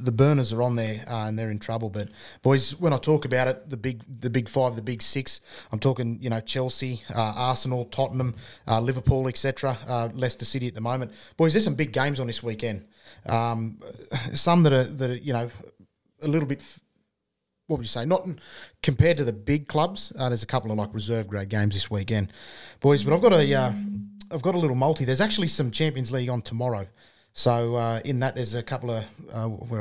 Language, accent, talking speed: English, Australian, 220 wpm